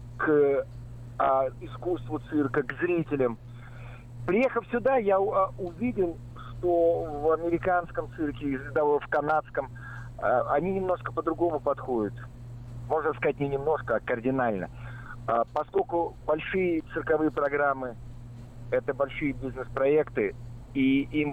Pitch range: 120-160 Hz